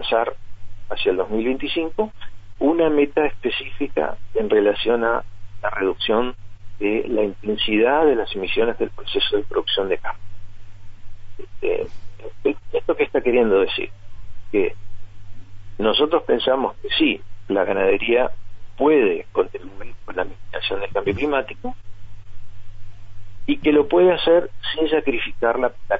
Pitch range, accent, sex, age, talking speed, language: 100-160 Hz, Argentinian, male, 40-59, 120 wpm, Spanish